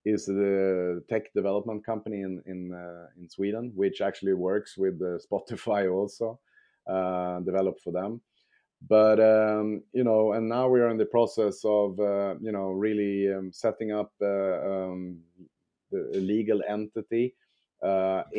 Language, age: English, 30-49